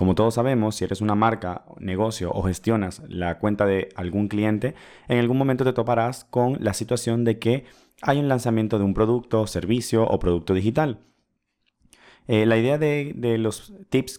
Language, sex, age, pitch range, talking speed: Spanish, male, 30-49, 100-120 Hz, 180 wpm